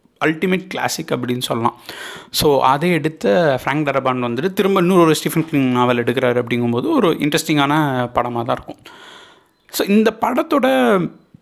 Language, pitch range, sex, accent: Tamil, 130-175 Hz, male, native